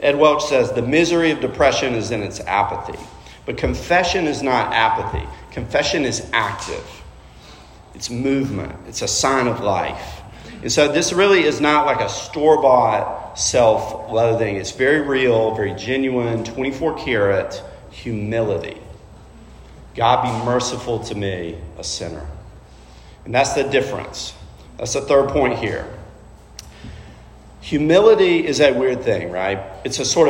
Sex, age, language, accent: male, 40-59, English, American